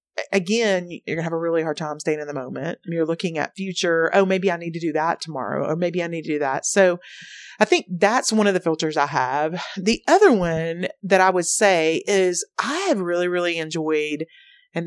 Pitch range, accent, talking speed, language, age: 165-210 Hz, American, 220 wpm, English, 30-49